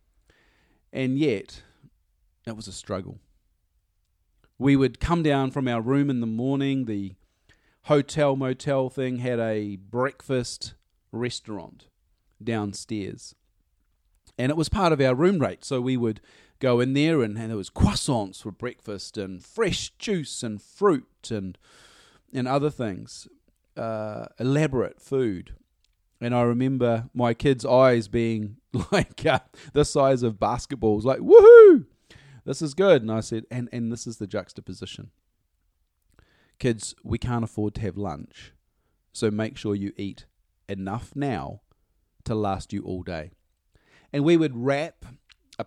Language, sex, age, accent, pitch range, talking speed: English, male, 40-59, Australian, 100-135 Hz, 140 wpm